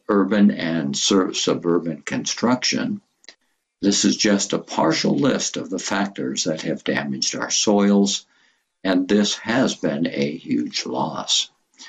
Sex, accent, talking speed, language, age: male, American, 125 wpm, English, 60-79